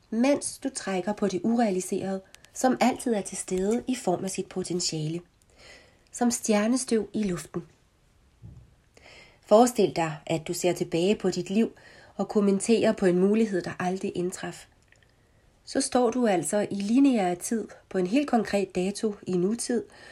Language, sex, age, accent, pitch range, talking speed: Danish, female, 30-49, native, 180-230 Hz, 150 wpm